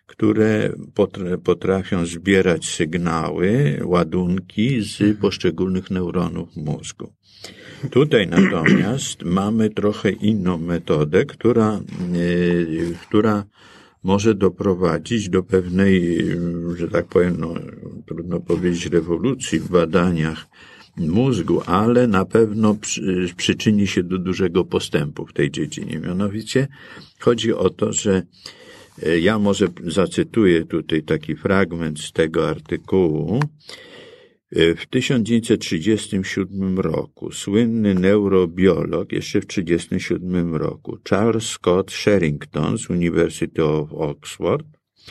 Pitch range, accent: 85-110 Hz, native